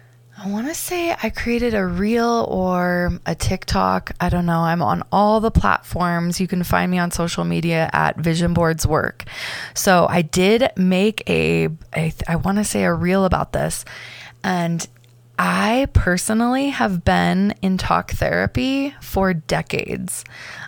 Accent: American